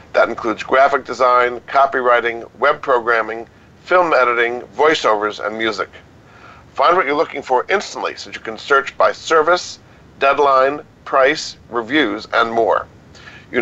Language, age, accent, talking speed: English, 50-69, American, 135 wpm